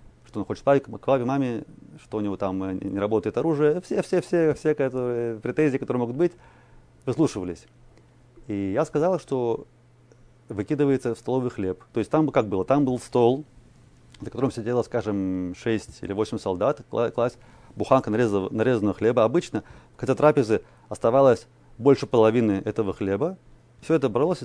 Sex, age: male, 30-49